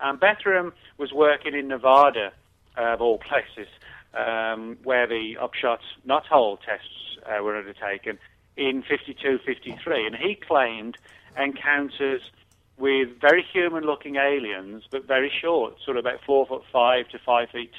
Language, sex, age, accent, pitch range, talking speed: English, male, 40-59, British, 115-135 Hz, 140 wpm